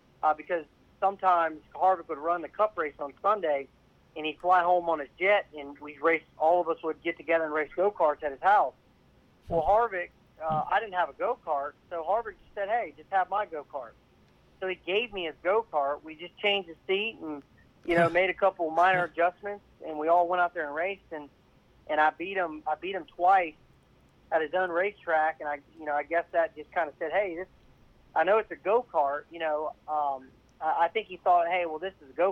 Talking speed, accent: 225 wpm, American